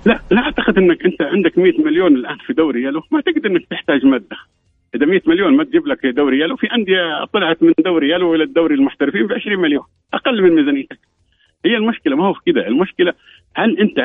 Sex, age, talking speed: male, 50-69, 205 wpm